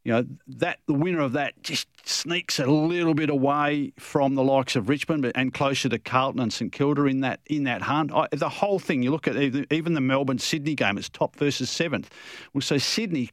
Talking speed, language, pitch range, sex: 225 wpm, English, 120-155 Hz, male